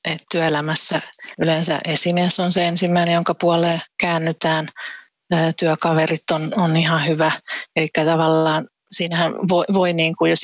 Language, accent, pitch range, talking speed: Finnish, native, 150-170 Hz, 125 wpm